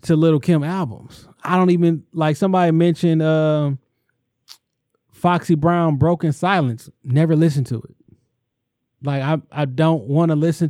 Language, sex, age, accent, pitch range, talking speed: English, male, 20-39, American, 135-175 Hz, 145 wpm